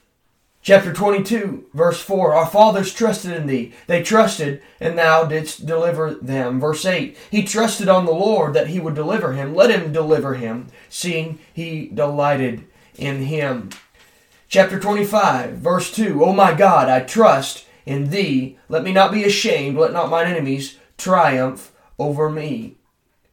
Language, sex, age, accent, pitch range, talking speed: English, male, 30-49, American, 150-200 Hz, 155 wpm